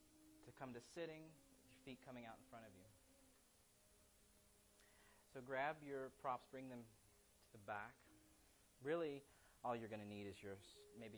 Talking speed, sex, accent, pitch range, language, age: 165 wpm, male, American, 105-175 Hz, English, 30-49